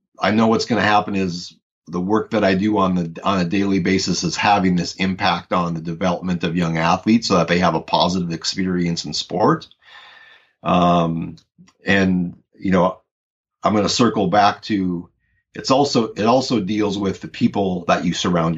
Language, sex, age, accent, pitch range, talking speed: English, male, 30-49, American, 85-100 Hz, 185 wpm